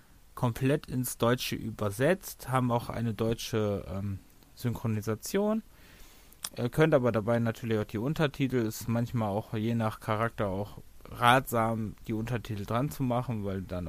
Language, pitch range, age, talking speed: German, 100-120 Hz, 30-49, 145 wpm